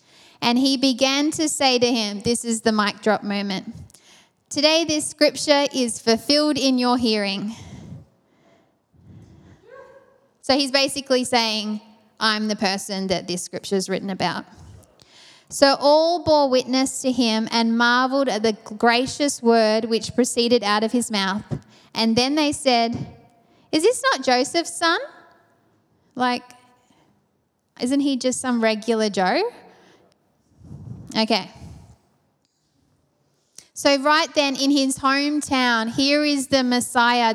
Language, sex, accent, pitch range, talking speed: English, female, Australian, 225-270 Hz, 125 wpm